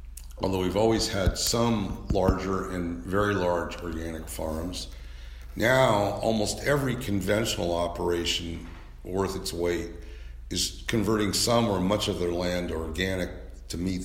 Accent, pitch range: American, 80-95 Hz